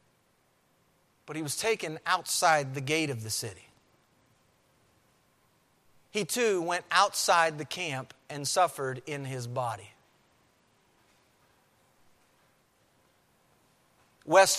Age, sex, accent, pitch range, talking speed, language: 40-59, male, American, 145-200 Hz, 90 wpm, English